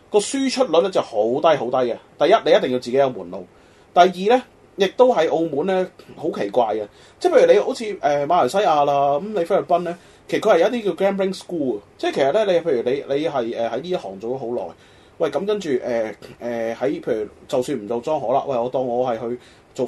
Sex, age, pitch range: male, 30-49, 125-195 Hz